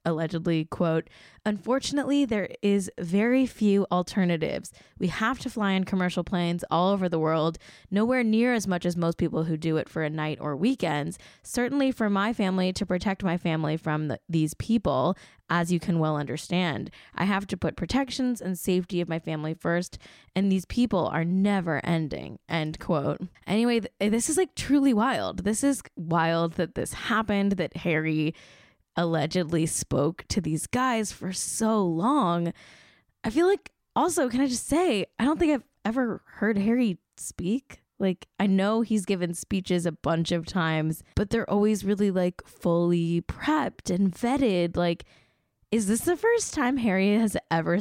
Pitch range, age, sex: 165-225 Hz, 10-29, female